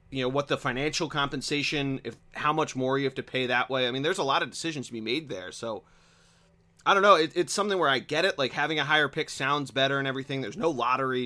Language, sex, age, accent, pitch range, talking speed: English, male, 30-49, American, 120-150 Hz, 265 wpm